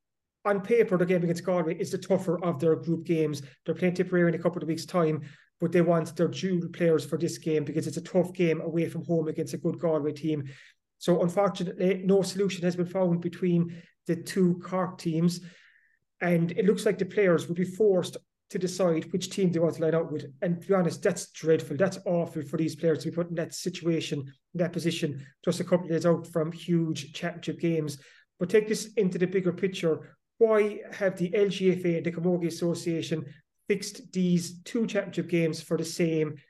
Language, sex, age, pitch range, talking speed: English, male, 30-49, 165-185 Hz, 210 wpm